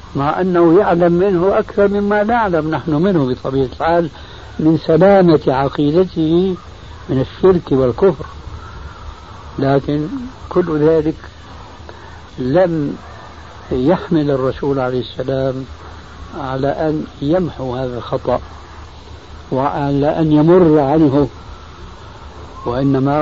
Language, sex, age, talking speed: Arabic, male, 60-79, 90 wpm